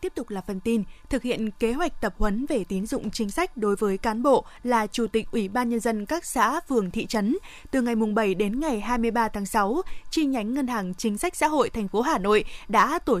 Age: 20-39